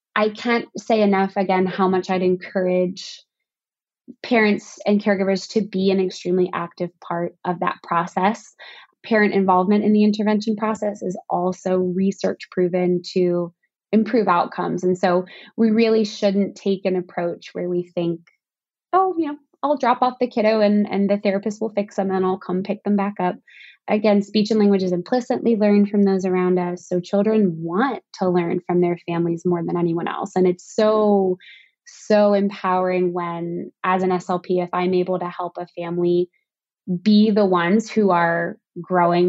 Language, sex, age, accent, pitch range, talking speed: English, female, 20-39, American, 180-210 Hz, 175 wpm